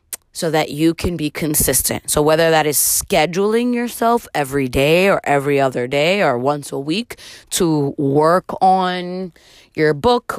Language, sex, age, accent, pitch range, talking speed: English, female, 30-49, American, 145-200 Hz, 155 wpm